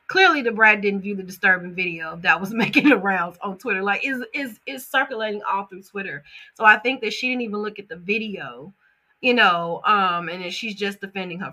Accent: American